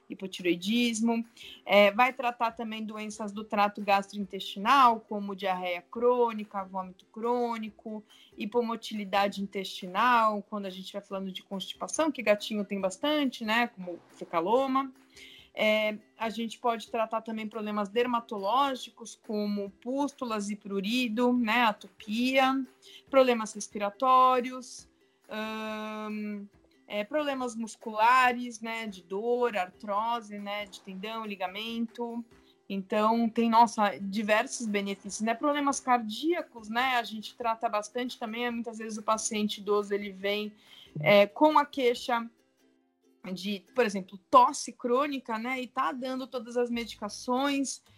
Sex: female